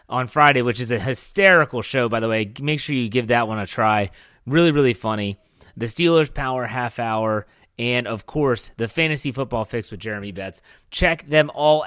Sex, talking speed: male, 195 wpm